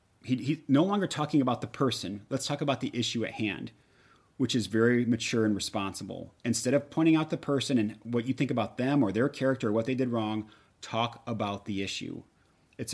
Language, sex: English, male